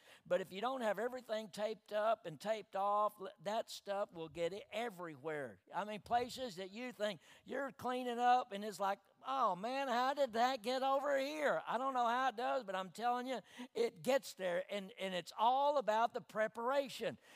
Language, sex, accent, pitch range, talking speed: English, male, American, 200-255 Hz, 195 wpm